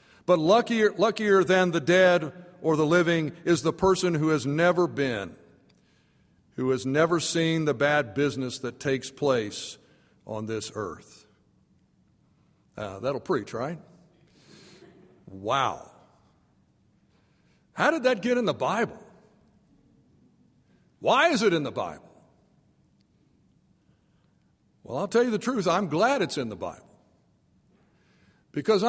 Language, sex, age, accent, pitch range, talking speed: English, male, 60-79, American, 170-230 Hz, 125 wpm